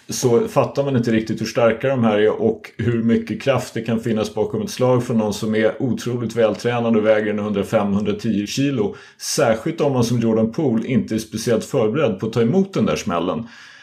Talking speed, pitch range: 215 wpm, 110-130 Hz